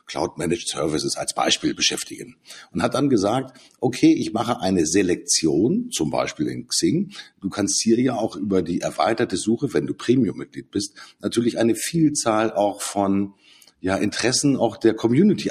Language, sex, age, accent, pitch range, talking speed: German, male, 50-69, German, 100-145 Hz, 155 wpm